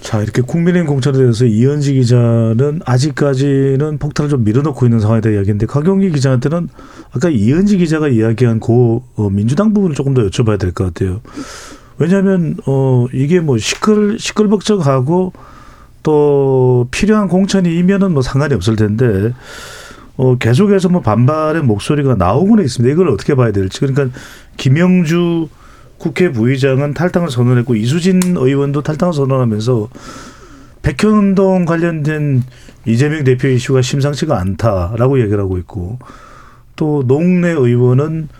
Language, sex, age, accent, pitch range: Korean, male, 40-59, native, 120-165 Hz